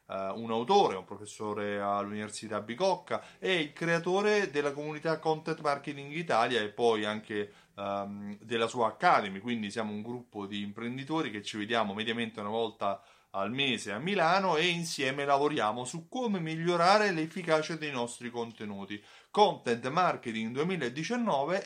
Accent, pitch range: native, 110-155 Hz